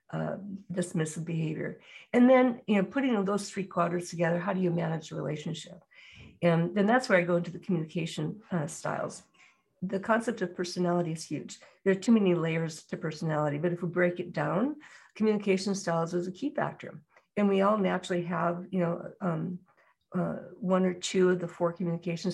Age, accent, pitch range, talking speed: 50-69, American, 175-200 Hz, 190 wpm